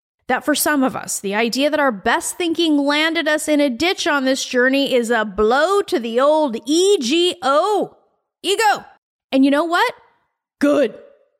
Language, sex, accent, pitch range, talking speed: English, female, American, 255-360 Hz, 170 wpm